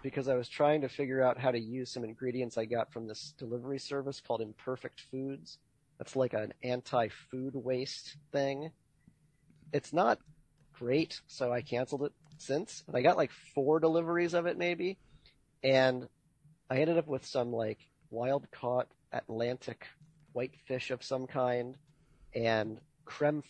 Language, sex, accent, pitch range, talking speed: English, male, American, 115-145 Hz, 150 wpm